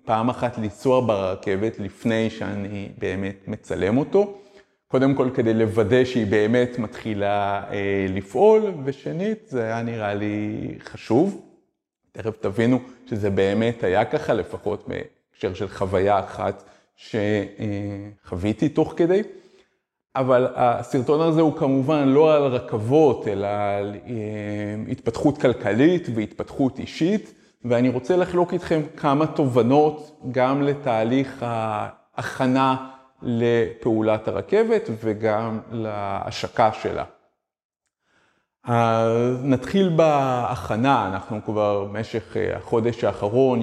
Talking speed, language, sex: 100 wpm, Hebrew, male